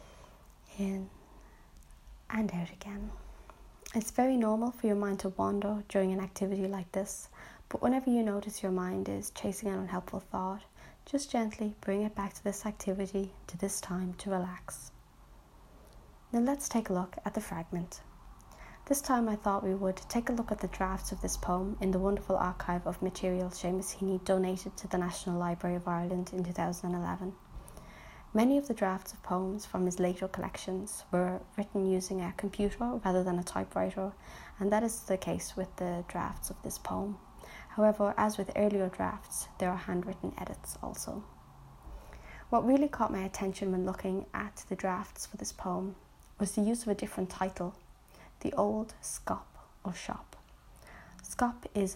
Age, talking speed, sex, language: 20-39, 170 wpm, female, English